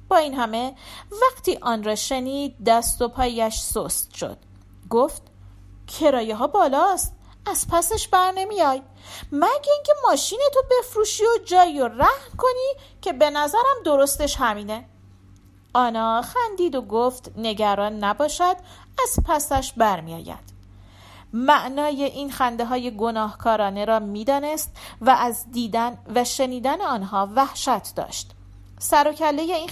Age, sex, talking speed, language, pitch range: 40-59, female, 120 wpm, Persian, 205-310 Hz